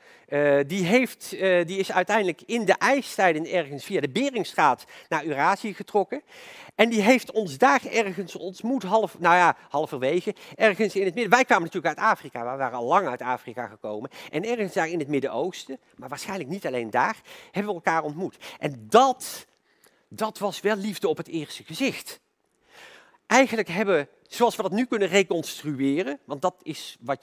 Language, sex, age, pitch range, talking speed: Dutch, male, 50-69, 160-240 Hz, 185 wpm